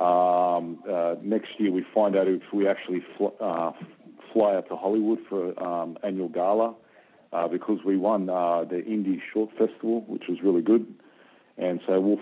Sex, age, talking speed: male, 40-59, 180 wpm